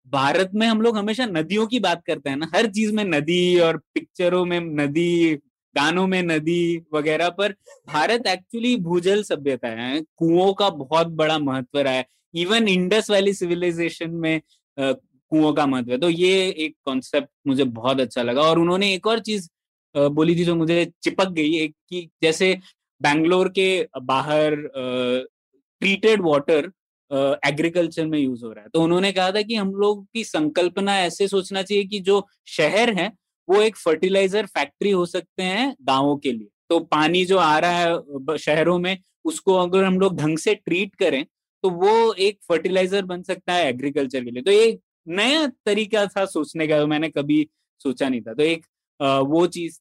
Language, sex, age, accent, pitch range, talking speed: Hindi, male, 20-39, native, 155-195 Hz, 175 wpm